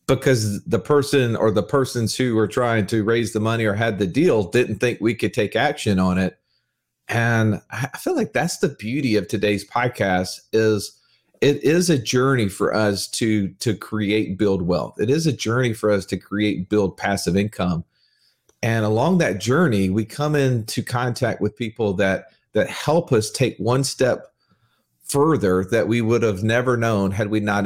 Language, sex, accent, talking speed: English, male, American, 185 wpm